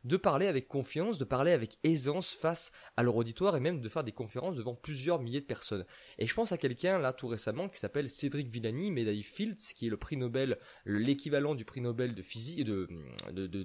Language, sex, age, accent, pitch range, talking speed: French, male, 20-39, French, 110-155 Hz, 230 wpm